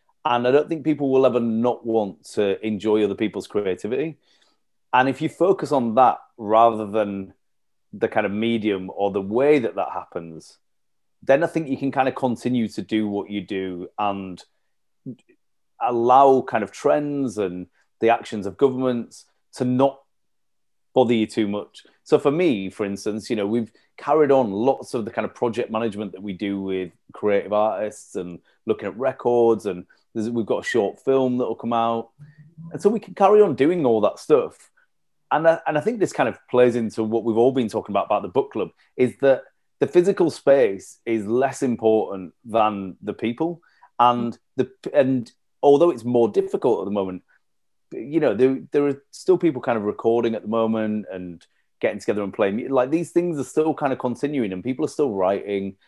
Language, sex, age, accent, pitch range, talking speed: English, male, 30-49, British, 105-135 Hz, 195 wpm